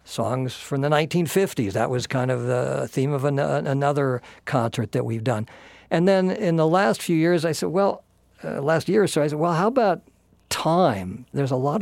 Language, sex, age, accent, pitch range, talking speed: English, male, 60-79, American, 120-155 Hz, 210 wpm